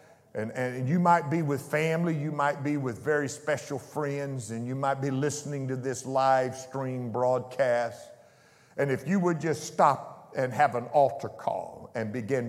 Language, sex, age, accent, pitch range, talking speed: English, male, 50-69, American, 120-145 Hz, 180 wpm